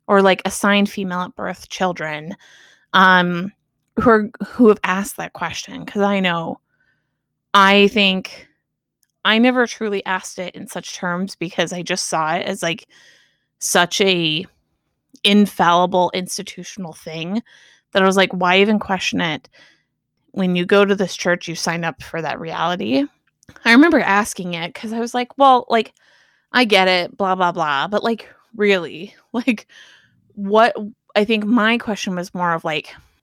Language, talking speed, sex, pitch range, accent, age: English, 160 wpm, female, 180-220 Hz, American, 20-39